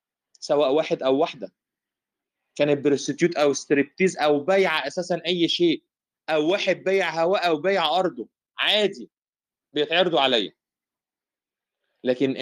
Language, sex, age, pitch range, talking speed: Arabic, male, 30-49, 140-185 Hz, 115 wpm